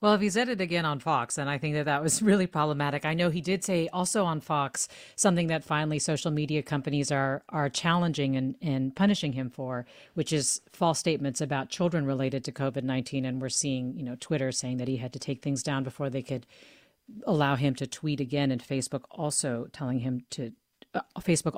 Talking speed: 215 wpm